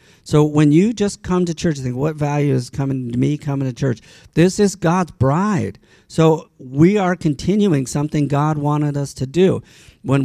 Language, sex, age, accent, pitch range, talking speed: English, male, 50-69, American, 130-165 Hz, 195 wpm